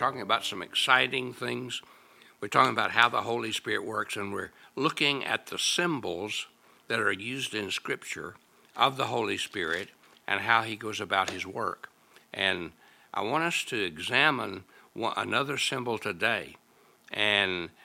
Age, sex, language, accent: 60-79, male, English, American